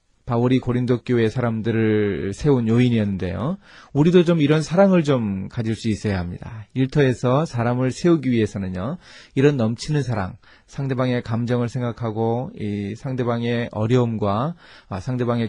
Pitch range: 105-150 Hz